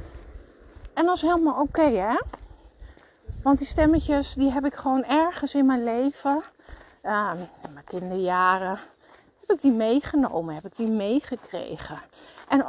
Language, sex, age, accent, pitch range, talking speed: Dutch, female, 40-59, Dutch, 215-285 Hz, 145 wpm